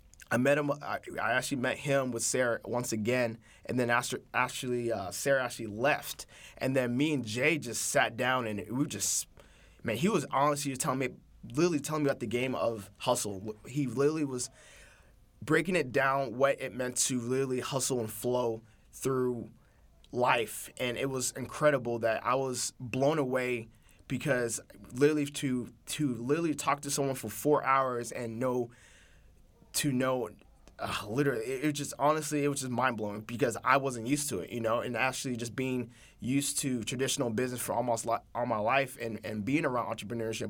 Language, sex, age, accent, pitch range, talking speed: English, male, 20-39, American, 115-135 Hz, 180 wpm